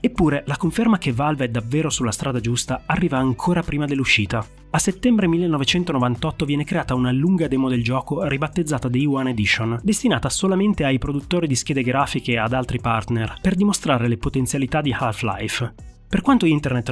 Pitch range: 120-160 Hz